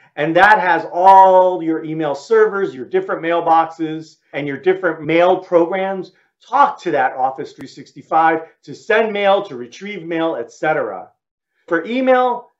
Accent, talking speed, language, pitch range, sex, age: American, 140 wpm, English, 145-215 Hz, male, 40-59